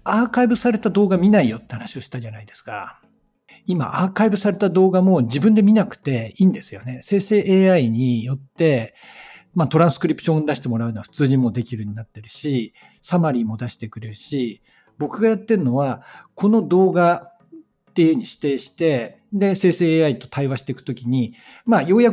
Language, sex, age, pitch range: Japanese, male, 60-79, 125-210 Hz